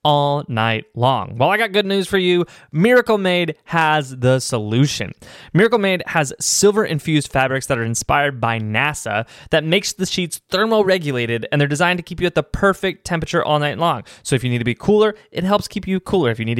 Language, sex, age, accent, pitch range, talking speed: English, male, 20-39, American, 140-190 Hz, 215 wpm